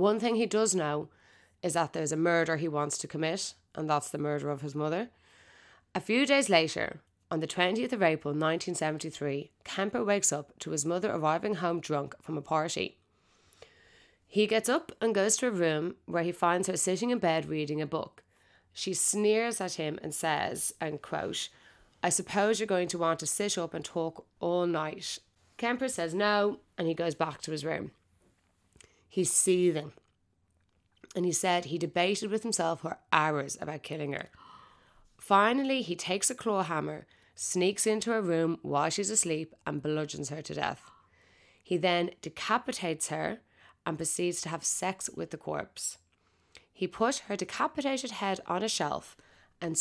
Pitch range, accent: 155-200 Hz, Irish